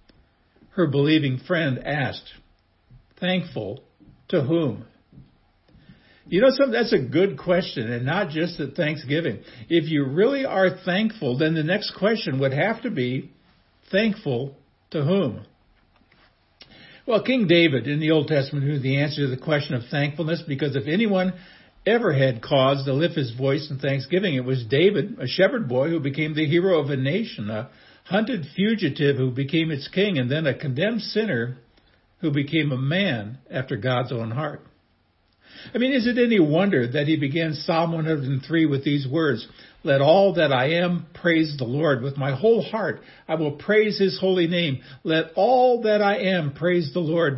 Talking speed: 170 wpm